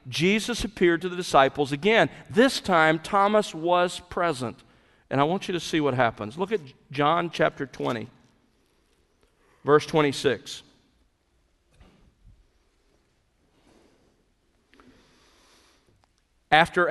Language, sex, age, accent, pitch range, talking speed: English, male, 50-69, American, 140-185 Hz, 95 wpm